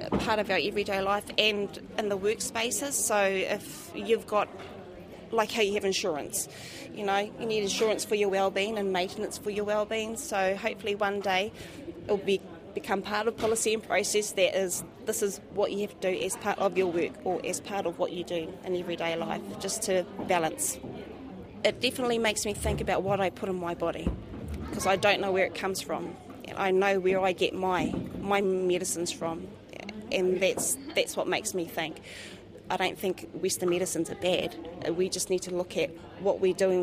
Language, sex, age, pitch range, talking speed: English, female, 30-49, 180-205 Hz, 200 wpm